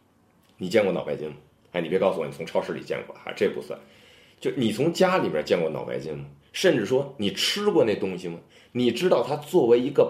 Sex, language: male, Chinese